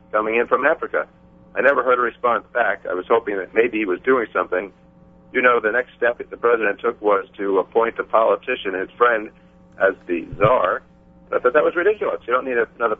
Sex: male